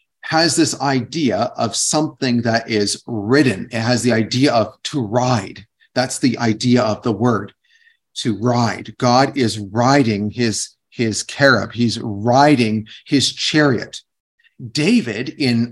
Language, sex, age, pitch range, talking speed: English, male, 40-59, 115-155 Hz, 135 wpm